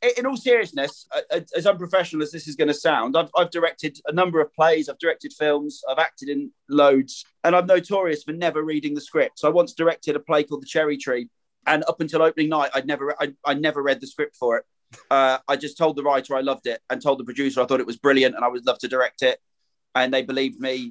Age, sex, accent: 30-49, male, British